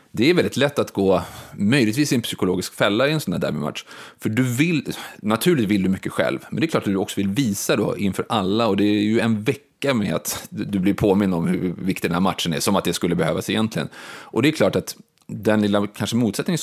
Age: 30-49